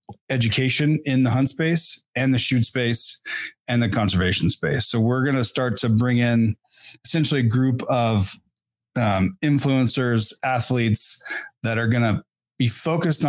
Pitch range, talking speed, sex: 115-130 Hz, 155 wpm, male